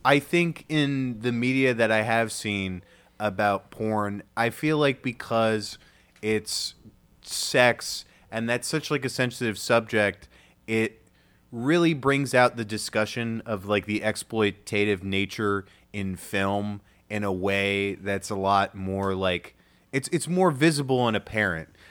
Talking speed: 140 wpm